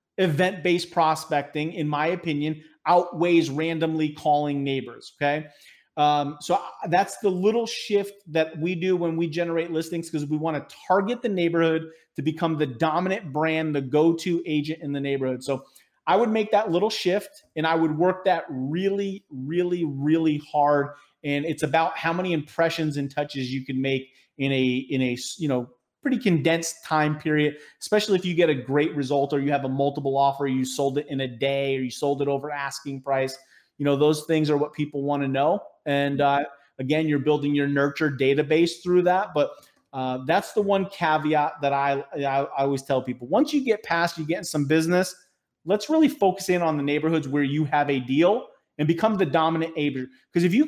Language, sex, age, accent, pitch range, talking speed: English, male, 30-49, American, 140-175 Hz, 195 wpm